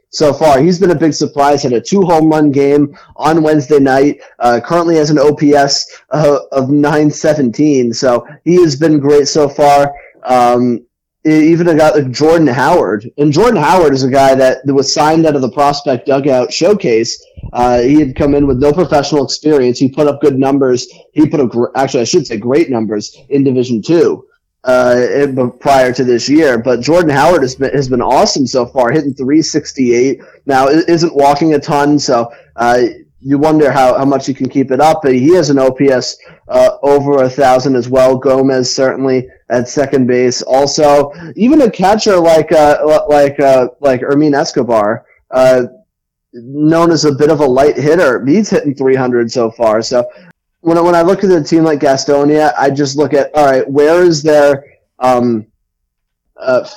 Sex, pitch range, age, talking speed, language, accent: male, 130-155 Hz, 20-39, 185 wpm, English, American